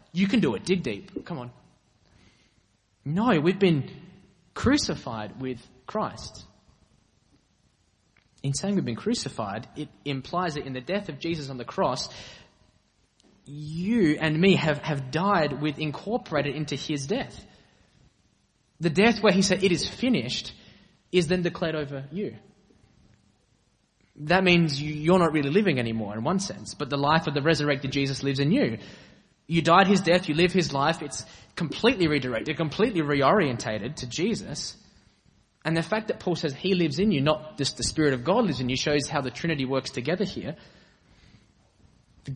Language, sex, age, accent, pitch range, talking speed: English, male, 20-39, Australian, 130-180 Hz, 165 wpm